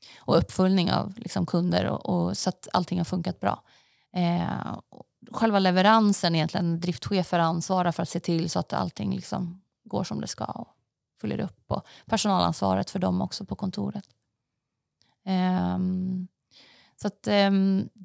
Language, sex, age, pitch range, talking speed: Swedish, female, 30-49, 180-205 Hz, 155 wpm